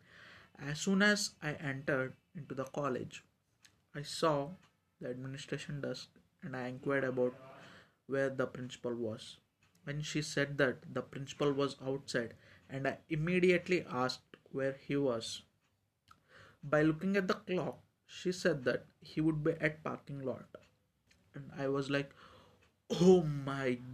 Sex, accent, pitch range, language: male, native, 125-165 Hz, Telugu